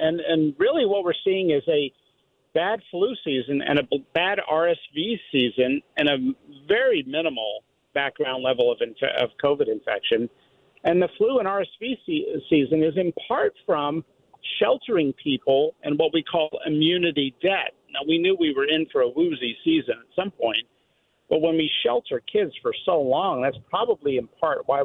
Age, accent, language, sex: 50-69, American, English, male